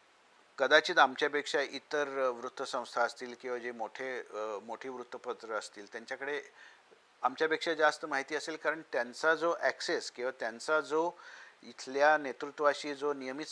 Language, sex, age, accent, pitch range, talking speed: Marathi, male, 50-69, native, 125-160 Hz, 80 wpm